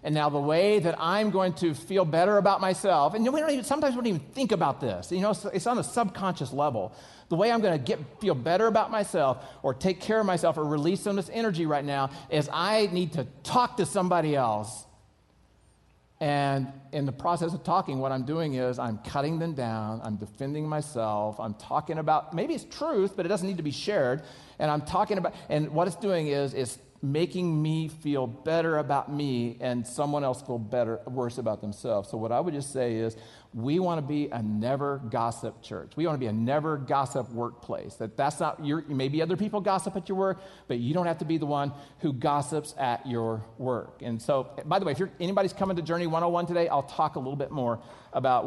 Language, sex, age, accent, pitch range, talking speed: English, male, 40-59, American, 130-185 Hz, 230 wpm